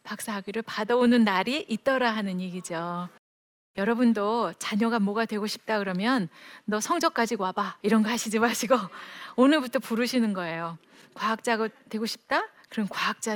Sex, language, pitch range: female, Korean, 200-250 Hz